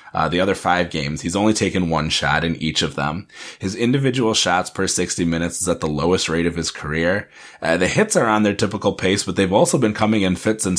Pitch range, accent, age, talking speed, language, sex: 85-110 Hz, American, 30-49, 245 wpm, English, male